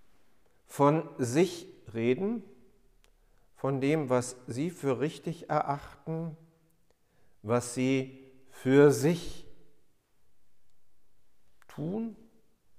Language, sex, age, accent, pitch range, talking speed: German, male, 50-69, German, 100-145 Hz, 70 wpm